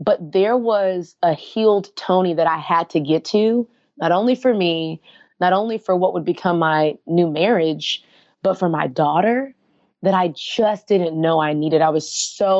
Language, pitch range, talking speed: English, 165-195 Hz, 185 wpm